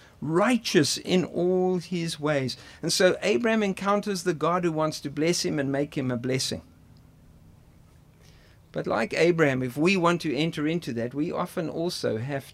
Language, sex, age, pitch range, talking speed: English, male, 50-69, 165-245 Hz, 165 wpm